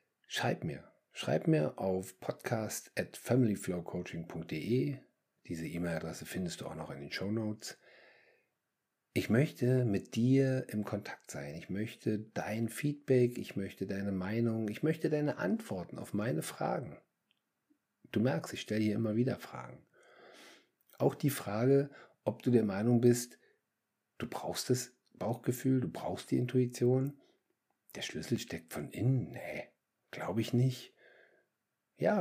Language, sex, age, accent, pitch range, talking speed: German, male, 50-69, German, 95-125 Hz, 130 wpm